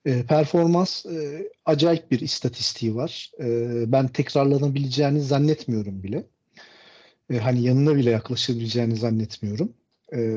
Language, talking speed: Turkish, 110 wpm